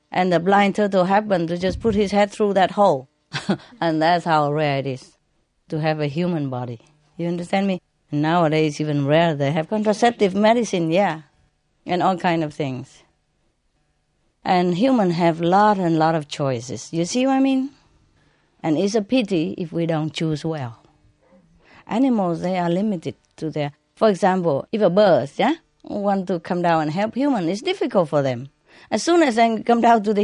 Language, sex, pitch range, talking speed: English, female, 150-205 Hz, 185 wpm